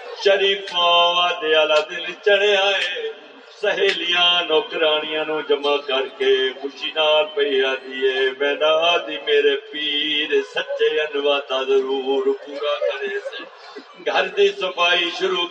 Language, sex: Urdu, male